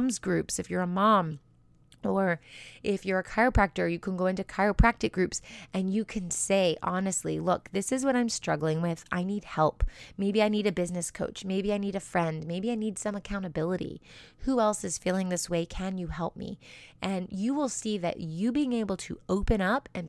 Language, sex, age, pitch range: English, female, 30-49, 175-220 Hz